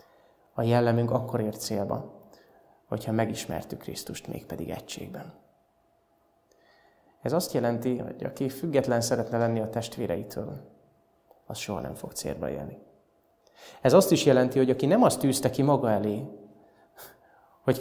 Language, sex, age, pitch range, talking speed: Hungarian, male, 20-39, 110-130 Hz, 130 wpm